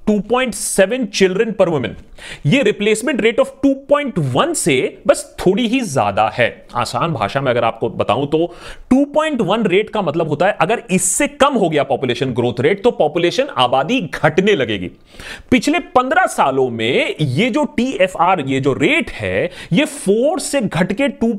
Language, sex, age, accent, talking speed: Hindi, male, 30-49, native, 80 wpm